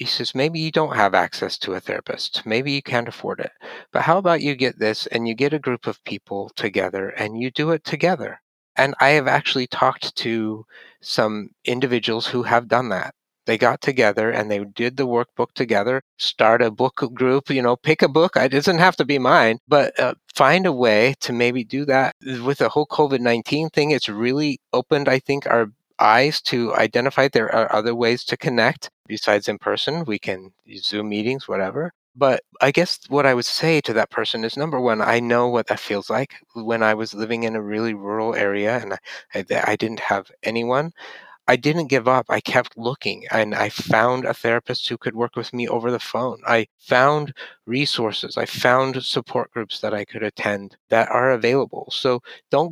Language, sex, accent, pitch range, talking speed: English, male, American, 110-140 Hz, 205 wpm